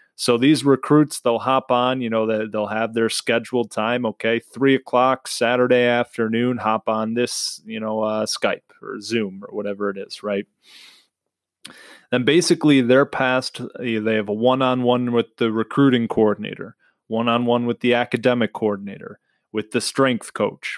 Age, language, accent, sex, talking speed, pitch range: 20-39, English, American, male, 165 wpm, 110-125 Hz